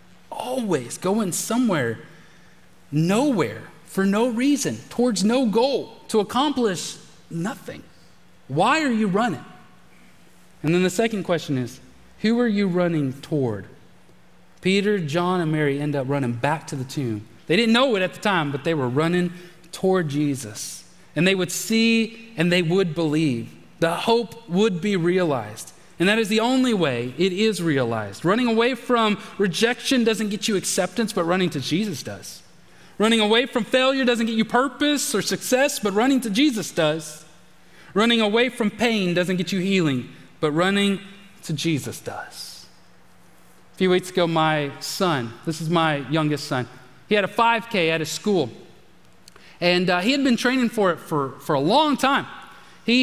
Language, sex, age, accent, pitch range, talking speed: English, male, 30-49, American, 155-225 Hz, 165 wpm